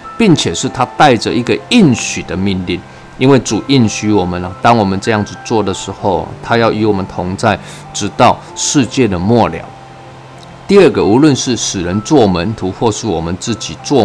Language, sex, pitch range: Chinese, male, 95-125 Hz